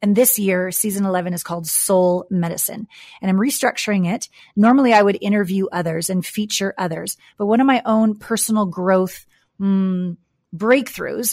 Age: 30-49